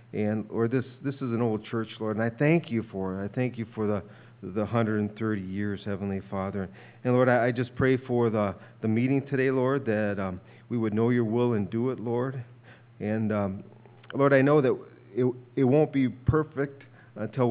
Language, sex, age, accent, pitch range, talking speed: English, male, 40-59, American, 105-125 Hz, 205 wpm